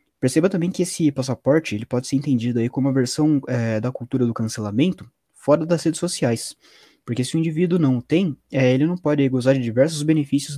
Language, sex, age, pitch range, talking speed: Portuguese, male, 20-39, 125-155 Hz, 210 wpm